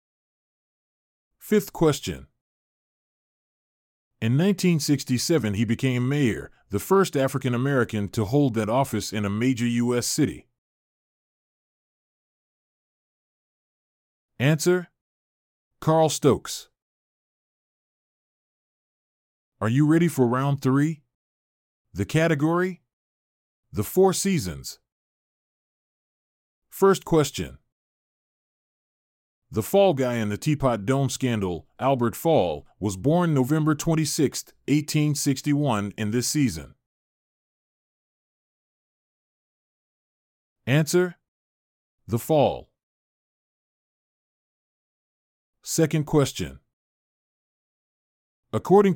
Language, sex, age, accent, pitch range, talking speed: English, male, 40-59, American, 100-155 Hz, 70 wpm